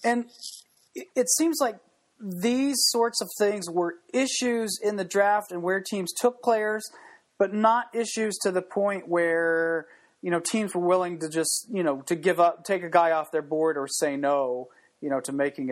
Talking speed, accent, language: 190 wpm, American, English